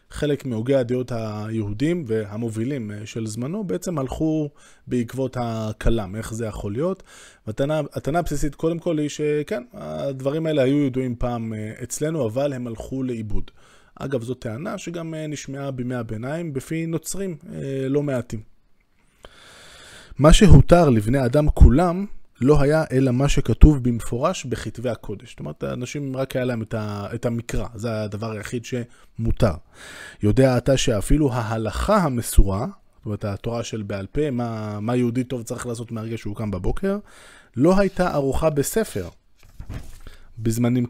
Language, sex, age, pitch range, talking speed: Hebrew, male, 20-39, 110-145 Hz, 140 wpm